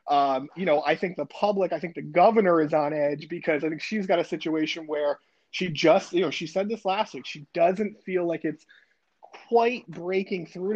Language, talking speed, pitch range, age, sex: English, 215 wpm, 155-190 Hz, 20-39, male